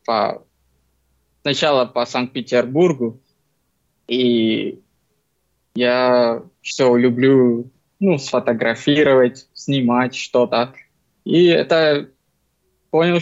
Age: 20-39